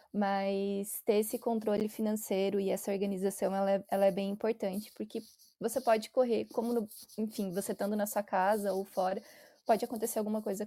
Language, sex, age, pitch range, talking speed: Portuguese, female, 20-39, 200-225 Hz, 170 wpm